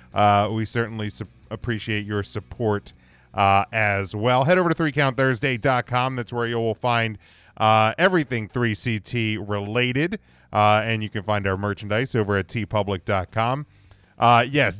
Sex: male